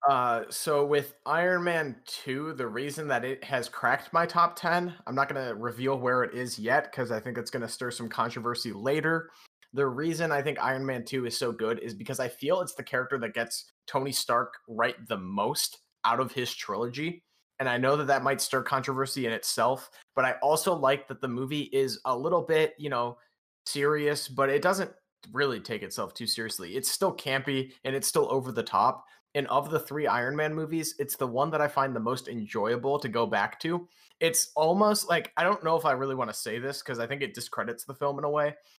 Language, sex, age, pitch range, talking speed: English, male, 20-39, 125-155 Hz, 225 wpm